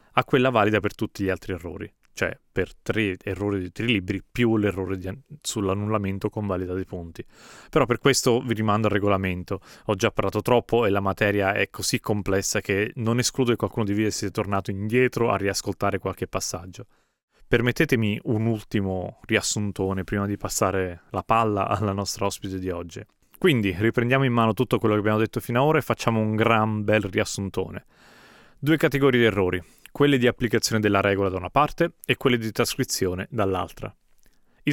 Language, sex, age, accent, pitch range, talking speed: Italian, male, 30-49, native, 95-120 Hz, 180 wpm